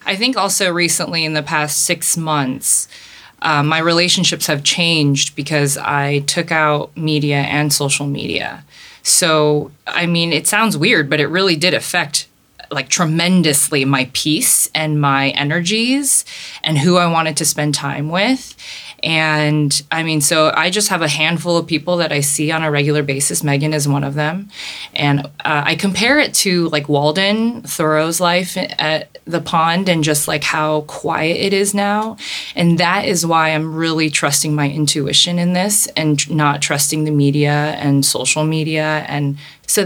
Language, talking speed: English, 170 wpm